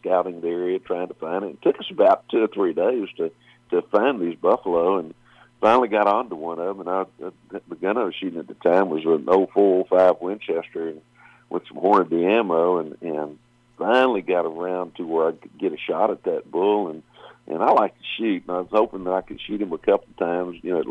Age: 50-69